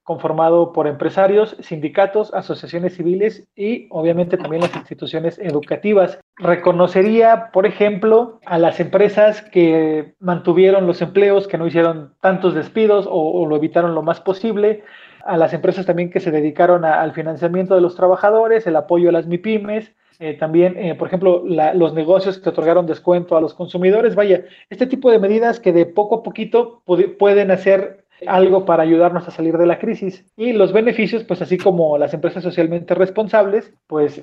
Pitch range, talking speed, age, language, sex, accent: 165-200 Hz, 165 wpm, 30-49, Spanish, male, Mexican